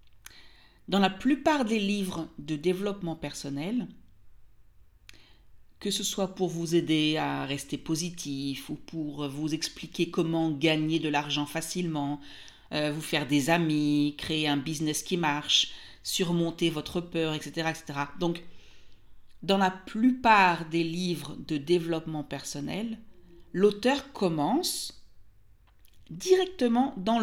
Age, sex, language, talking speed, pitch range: 50-69, female, French, 120 wpm, 145-195 Hz